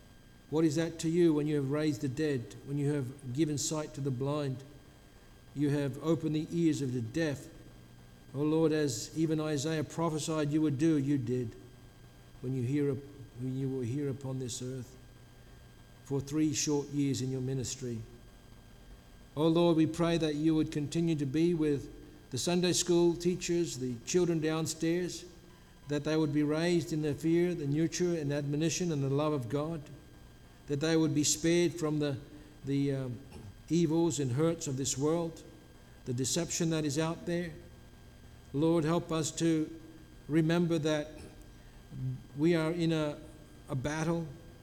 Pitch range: 135-165 Hz